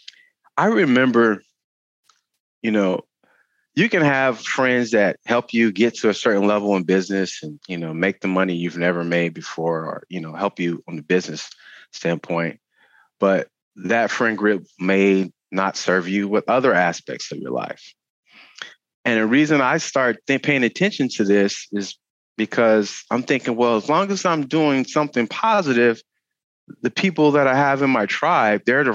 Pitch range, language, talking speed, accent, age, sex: 95-140 Hz, English, 170 wpm, American, 30-49, male